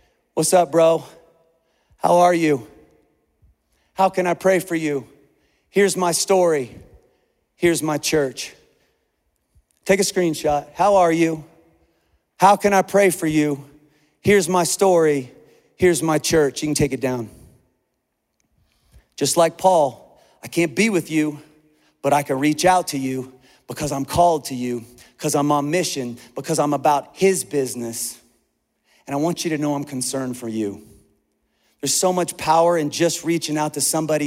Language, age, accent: English, 40-59, American